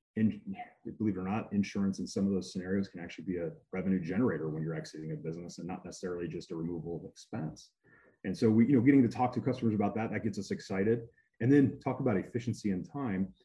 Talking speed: 235 wpm